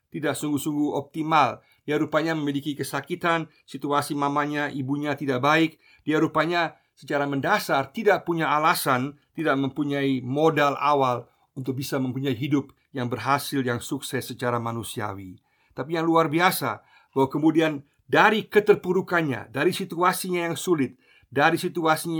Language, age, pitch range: Indonesian, 50-69, 125-155 Hz